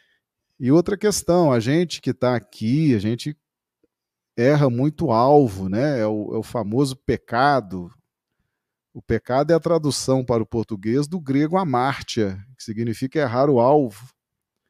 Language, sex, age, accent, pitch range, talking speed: Portuguese, male, 40-59, Brazilian, 125-185 Hz, 145 wpm